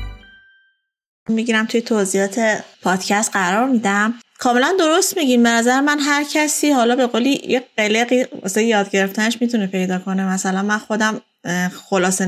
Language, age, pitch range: Persian, 20-39, 205-270 Hz